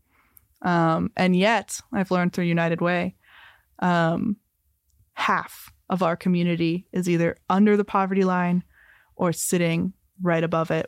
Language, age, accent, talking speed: English, 20-39, American, 125 wpm